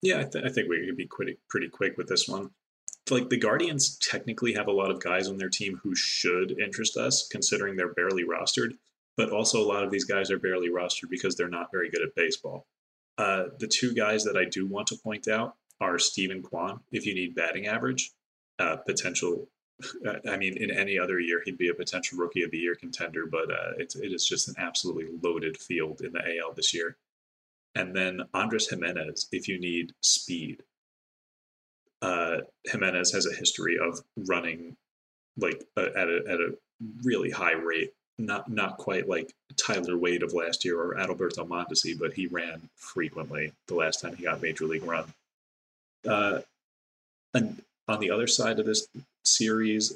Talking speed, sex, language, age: 190 wpm, male, English, 30-49